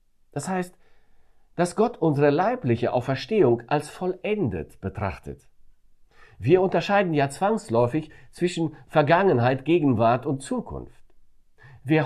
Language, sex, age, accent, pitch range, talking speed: German, male, 50-69, German, 110-155 Hz, 100 wpm